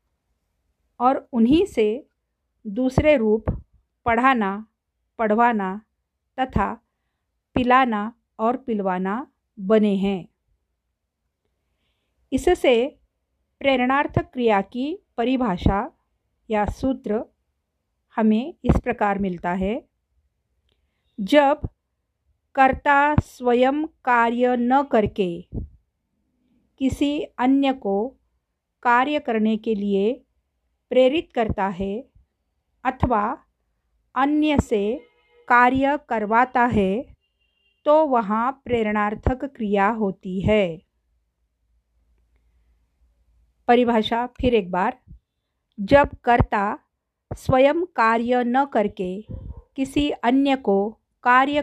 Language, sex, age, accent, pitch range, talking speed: Marathi, female, 50-69, native, 200-265 Hz, 80 wpm